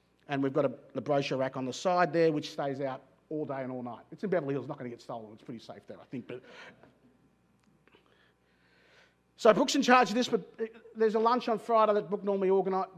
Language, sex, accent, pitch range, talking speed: English, male, Australian, 140-195 Hz, 245 wpm